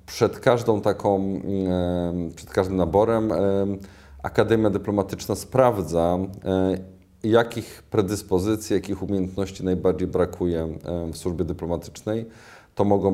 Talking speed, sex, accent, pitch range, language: 90 wpm, male, native, 90-105 Hz, Polish